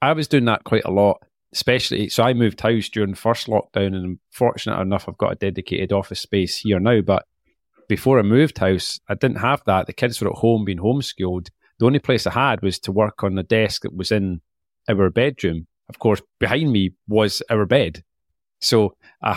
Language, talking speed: English, 210 wpm